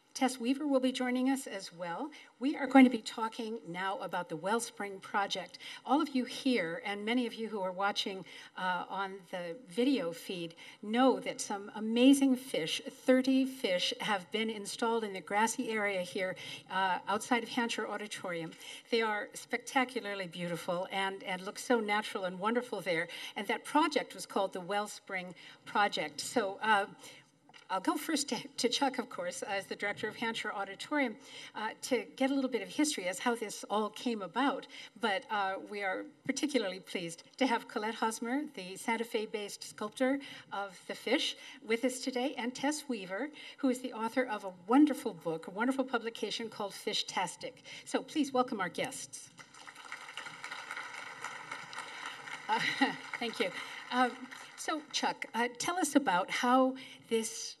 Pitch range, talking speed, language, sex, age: 200-265 Hz, 165 wpm, English, female, 50-69